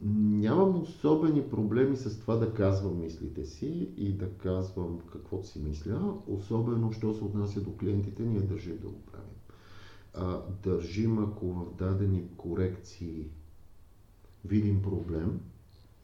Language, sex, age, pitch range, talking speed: Bulgarian, male, 50-69, 95-120 Hz, 125 wpm